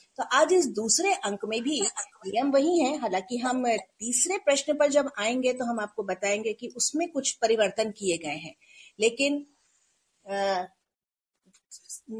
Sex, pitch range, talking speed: female, 220-290 Hz, 150 wpm